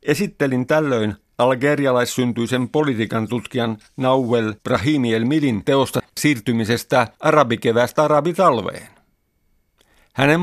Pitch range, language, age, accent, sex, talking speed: 115-145 Hz, Finnish, 50-69, native, male, 75 wpm